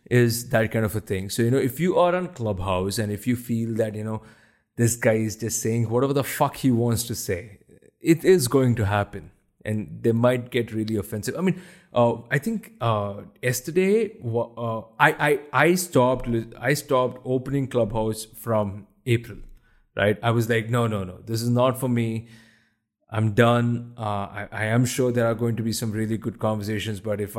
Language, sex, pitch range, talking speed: English, male, 110-130 Hz, 200 wpm